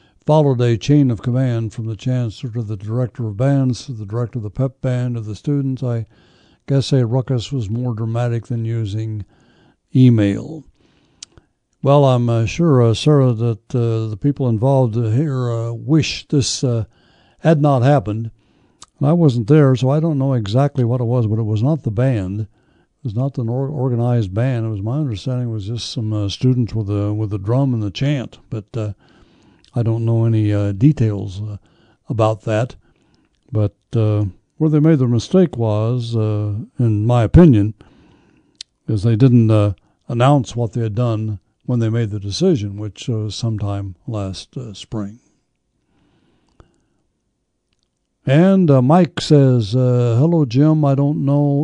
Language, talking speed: English, 175 wpm